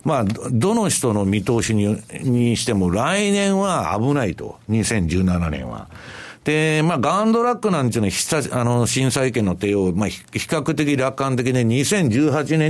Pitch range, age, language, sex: 110-175 Hz, 60-79, Japanese, male